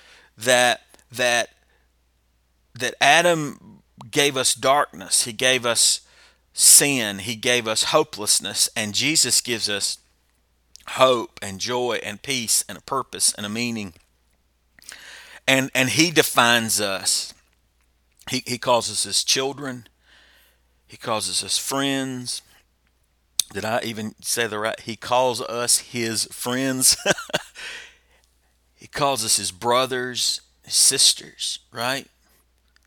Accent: American